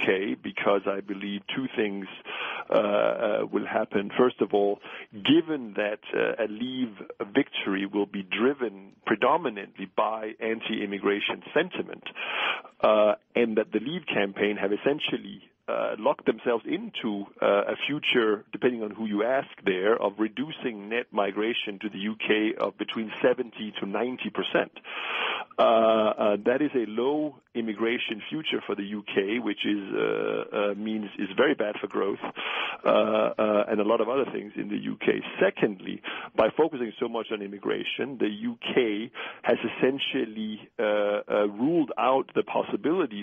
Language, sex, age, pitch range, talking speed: English, male, 50-69, 105-125 Hz, 155 wpm